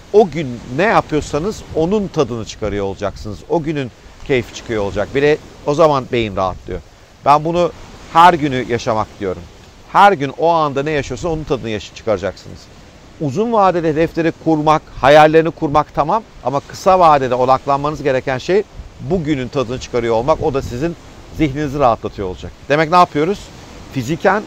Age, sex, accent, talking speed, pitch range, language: 50-69, male, native, 150 wpm, 120-170 Hz, Turkish